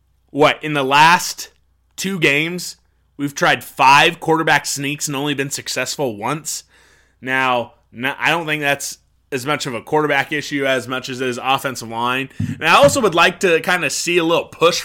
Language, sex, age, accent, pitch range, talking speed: English, male, 20-39, American, 125-160 Hz, 185 wpm